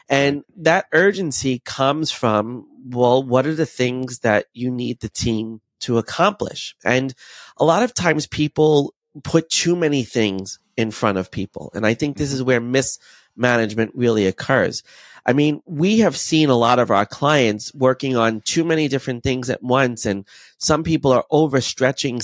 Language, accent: English, American